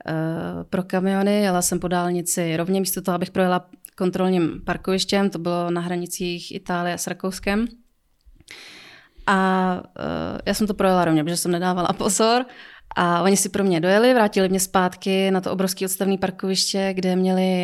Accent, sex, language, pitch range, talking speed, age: native, female, Czech, 180-205 Hz, 165 wpm, 20-39